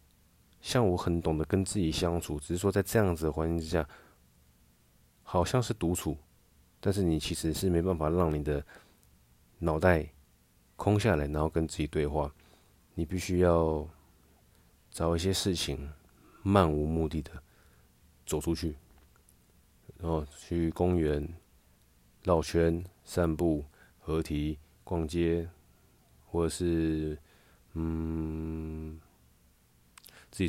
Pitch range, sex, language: 75-90 Hz, male, Chinese